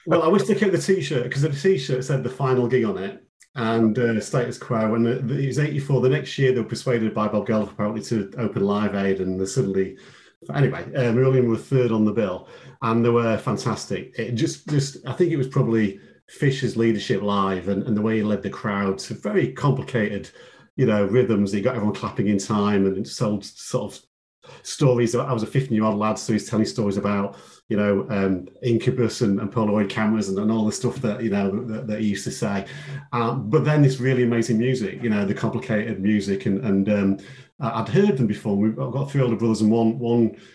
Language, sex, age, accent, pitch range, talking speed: English, male, 40-59, British, 105-125 Hz, 220 wpm